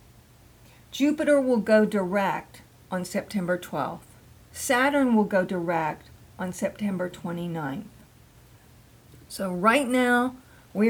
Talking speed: 100 wpm